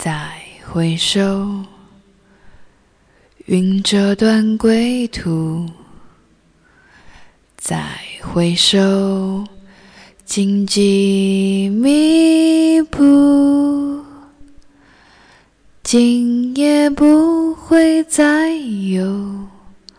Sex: female